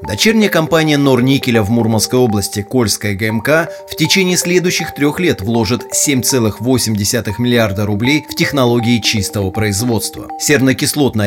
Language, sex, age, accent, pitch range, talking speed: Russian, male, 30-49, native, 110-145 Hz, 115 wpm